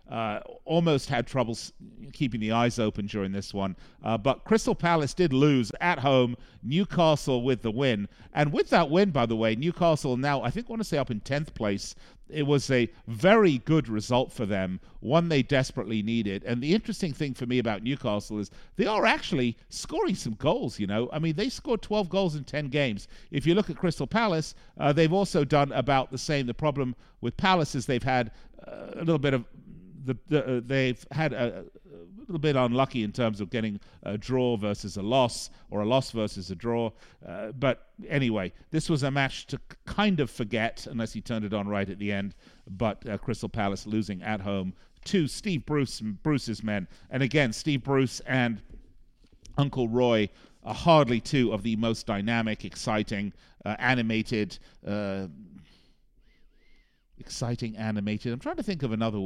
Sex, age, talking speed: male, 50-69, 190 wpm